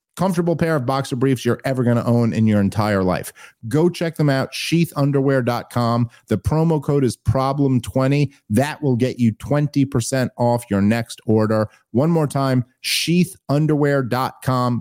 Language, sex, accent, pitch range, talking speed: English, male, American, 125-200 Hz, 150 wpm